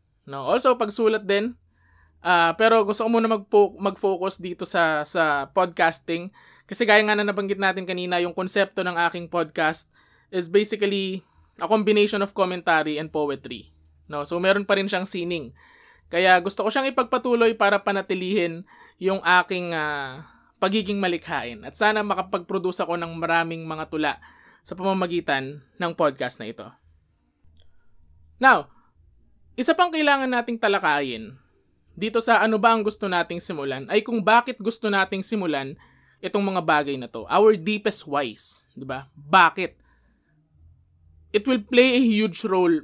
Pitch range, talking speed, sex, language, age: 145-205 Hz, 145 wpm, male, Filipino, 20-39